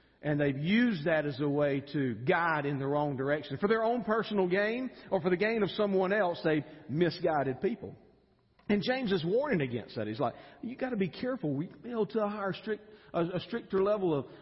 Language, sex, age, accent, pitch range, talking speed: English, male, 40-59, American, 170-240 Hz, 215 wpm